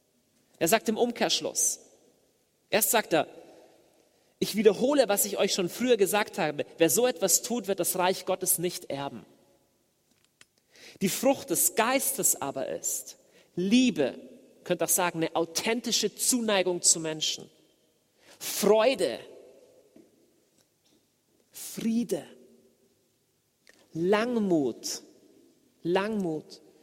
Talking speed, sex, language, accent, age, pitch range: 100 wpm, male, German, German, 40-59, 190-250 Hz